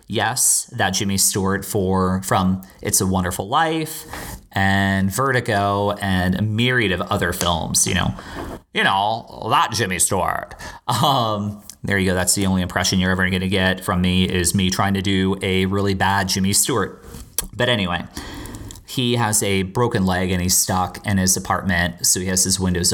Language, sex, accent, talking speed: English, male, American, 180 wpm